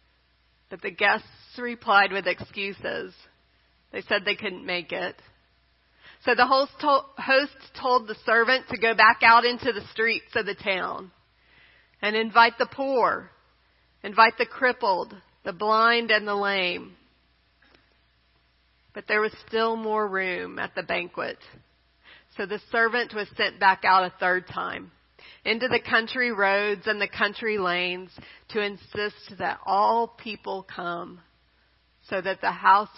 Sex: female